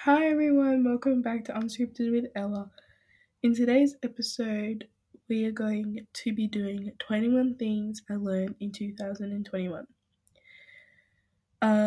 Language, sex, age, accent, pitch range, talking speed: English, female, 10-29, Australian, 205-245 Hz, 115 wpm